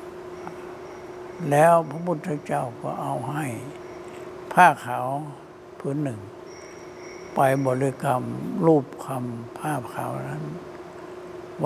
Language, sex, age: Thai, male, 60-79